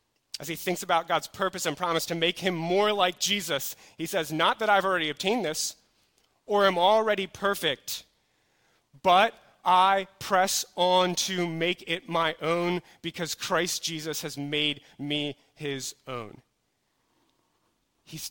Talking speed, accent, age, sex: 145 wpm, American, 30-49, male